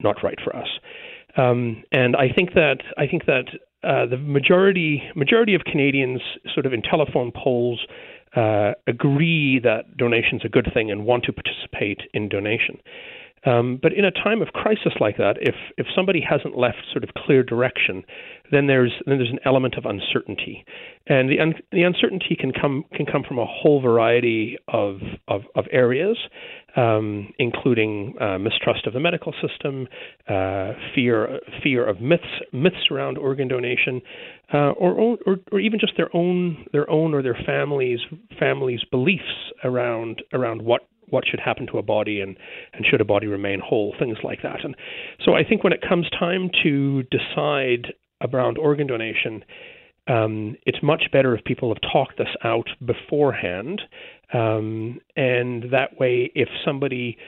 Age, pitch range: 40-59, 110-150 Hz